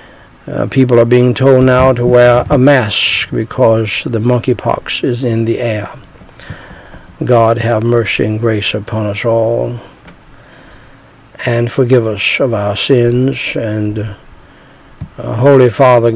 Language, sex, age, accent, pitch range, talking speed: English, male, 60-79, American, 115-135 Hz, 130 wpm